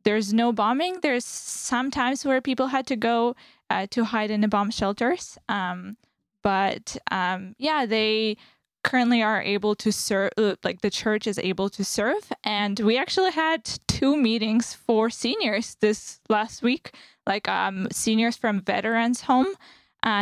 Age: 10-29